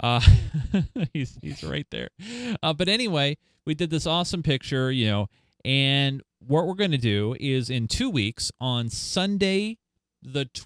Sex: male